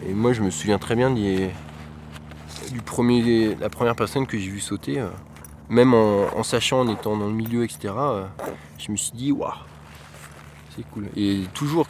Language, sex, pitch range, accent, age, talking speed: French, male, 95-120 Hz, French, 20-39, 185 wpm